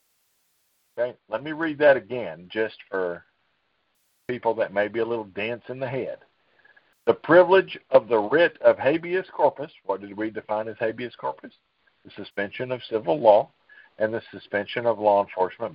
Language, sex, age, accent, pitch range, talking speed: English, male, 50-69, American, 105-130 Hz, 165 wpm